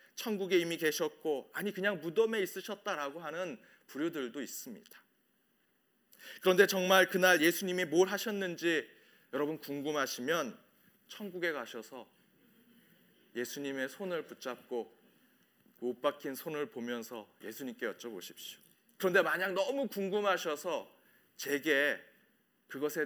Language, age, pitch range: Korean, 40-59, 145-185 Hz